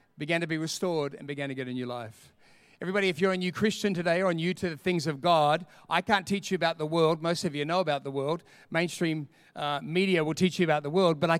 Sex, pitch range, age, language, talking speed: male, 155-195 Hz, 40-59, English, 265 wpm